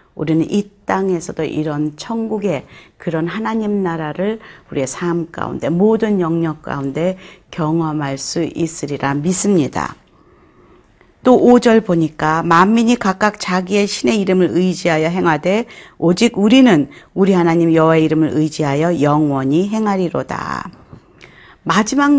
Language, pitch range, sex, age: Korean, 160-205 Hz, female, 40-59